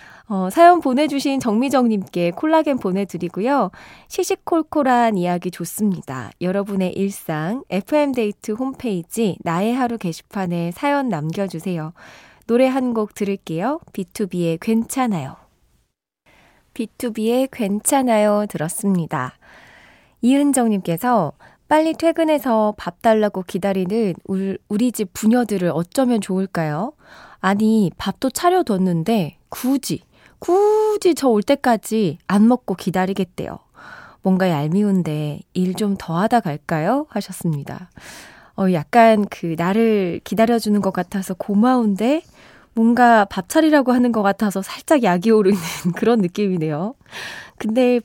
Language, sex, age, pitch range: Korean, female, 20-39, 185-250 Hz